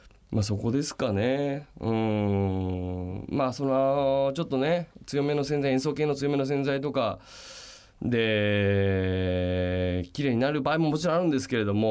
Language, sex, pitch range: Japanese, male, 95-145 Hz